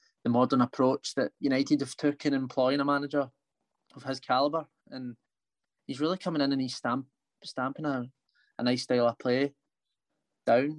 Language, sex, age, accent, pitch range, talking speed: English, male, 20-39, British, 120-140 Hz, 165 wpm